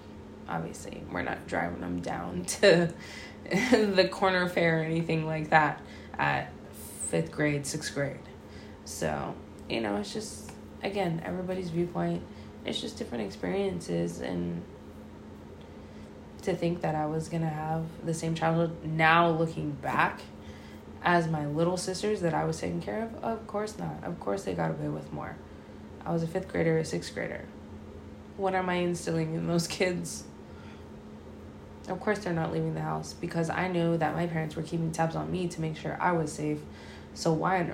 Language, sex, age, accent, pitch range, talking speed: English, female, 20-39, American, 105-175 Hz, 170 wpm